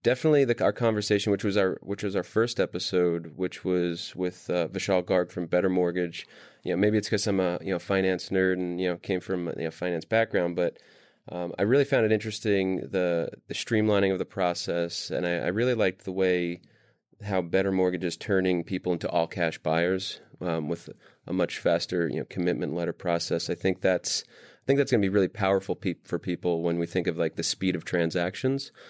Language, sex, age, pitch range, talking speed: English, male, 30-49, 90-100 Hz, 220 wpm